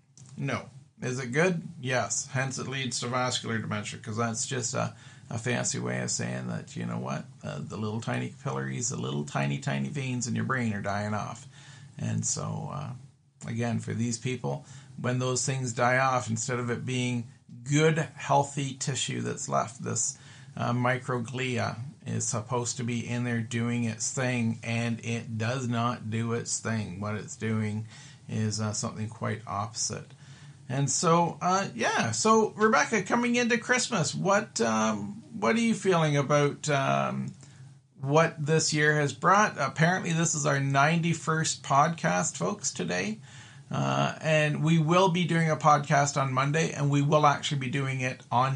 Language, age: English, 40-59